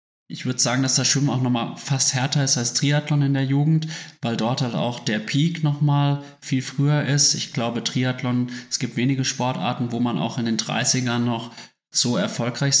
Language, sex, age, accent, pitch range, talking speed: German, male, 30-49, German, 120-145 Hz, 205 wpm